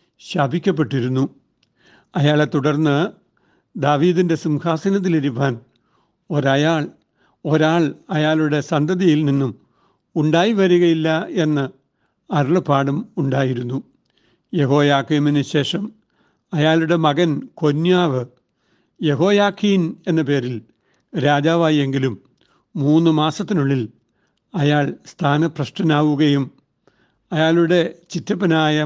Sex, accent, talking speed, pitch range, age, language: male, native, 60 wpm, 145-170 Hz, 60-79, Malayalam